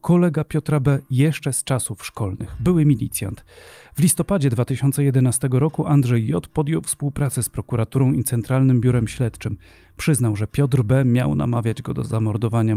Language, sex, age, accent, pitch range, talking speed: Polish, male, 40-59, native, 110-140 Hz, 150 wpm